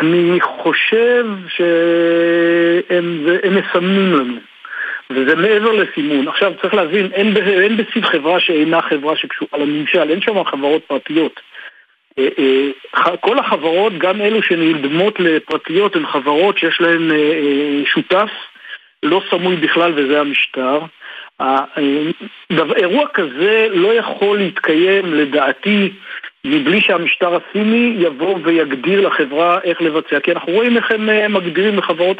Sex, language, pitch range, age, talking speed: male, Hebrew, 150-200 Hz, 50-69, 110 wpm